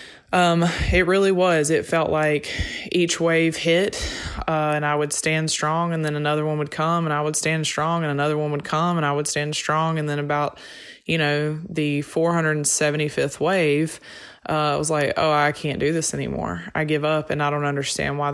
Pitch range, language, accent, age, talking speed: 145-165 Hz, English, American, 20-39, 205 wpm